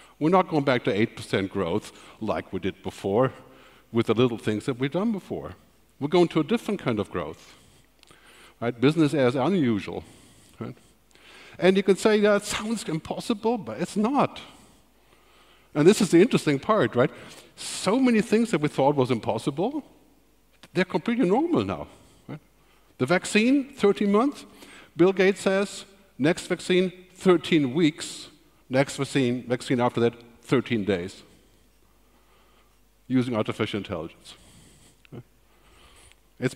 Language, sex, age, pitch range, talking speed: English, male, 60-79, 115-185 Hz, 140 wpm